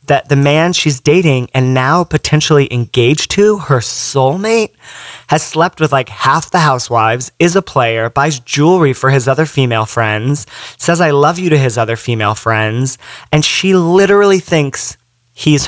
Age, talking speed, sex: 30-49, 165 wpm, male